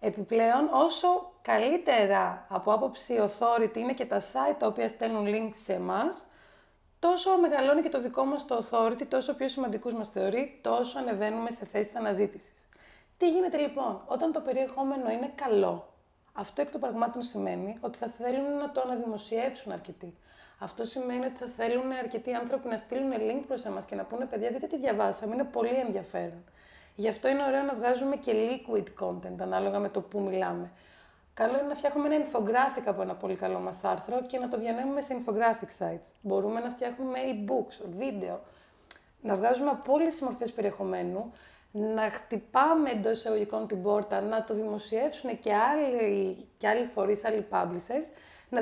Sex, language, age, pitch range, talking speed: female, Greek, 30-49, 210-265 Hz, 165 wpm